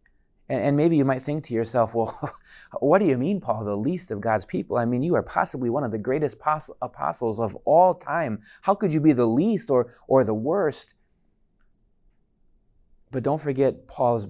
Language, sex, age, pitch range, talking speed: English, male, 30-49, 110-140 Hz, 190 wpm